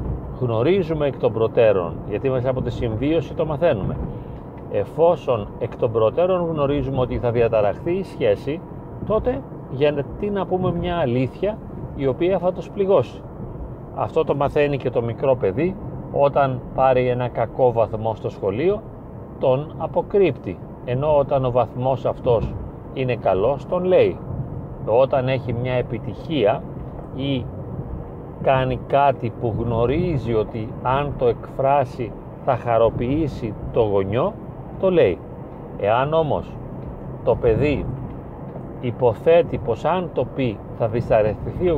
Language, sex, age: Greek, male, 40-59